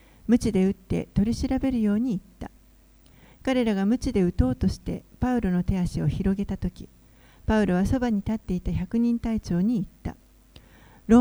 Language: Japanese